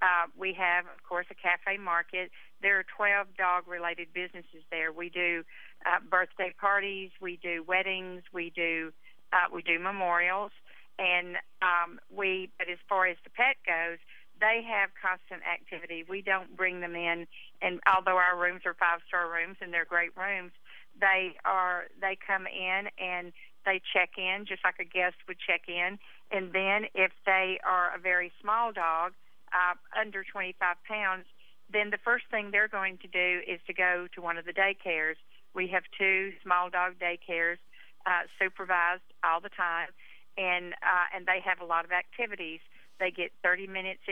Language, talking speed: English, 175 wpm